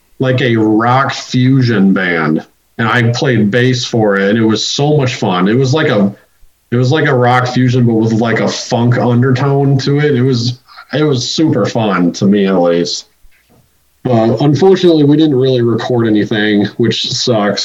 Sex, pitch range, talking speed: male, 110-135 Hz, 180 wpm